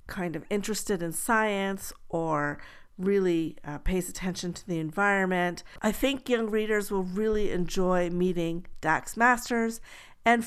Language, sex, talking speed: English, female, 140 wpm